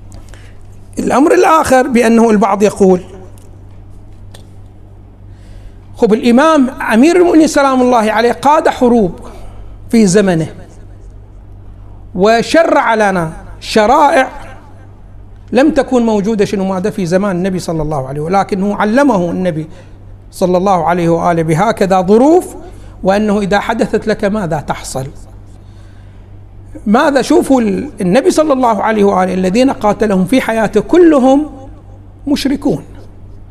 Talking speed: 105 wpm